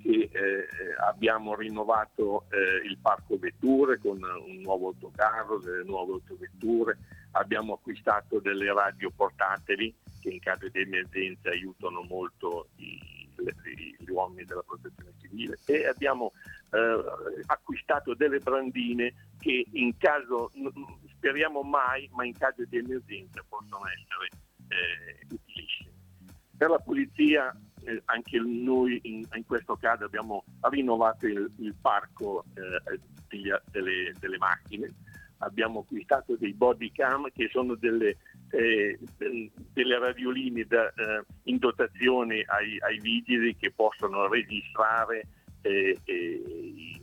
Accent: native